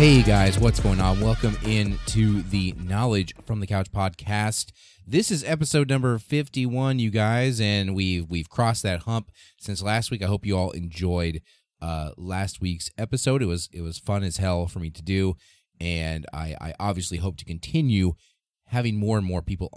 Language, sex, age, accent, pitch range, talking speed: English, male, 30-49, American, 90-115 Hz, 190 wpm